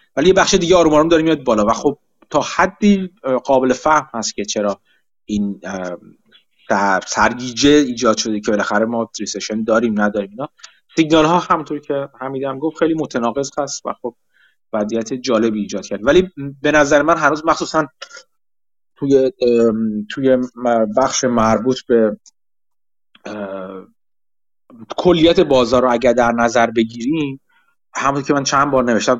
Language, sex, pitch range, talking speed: Persian, male, 115-150 Hz, 140 wpm